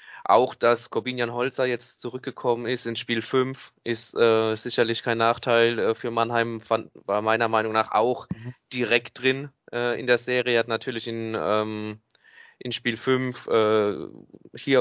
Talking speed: 160 wpm